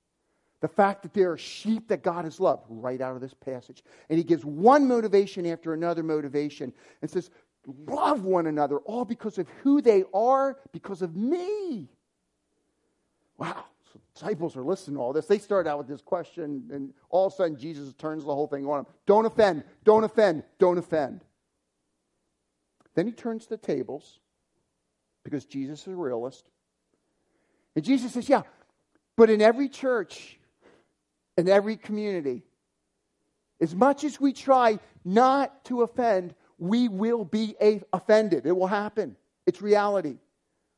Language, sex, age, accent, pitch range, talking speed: English, male, 50-69, American, 150-220 Hz, 160 wpm